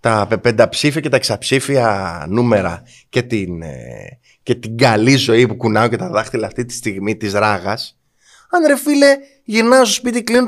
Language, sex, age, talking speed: Greek, male, 20-39, 180 wpm